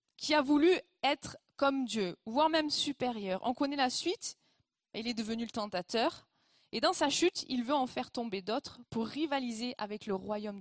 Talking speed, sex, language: 185 wpm, female, French